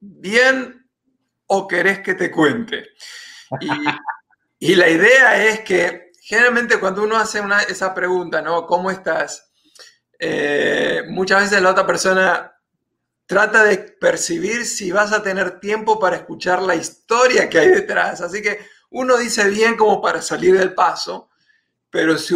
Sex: male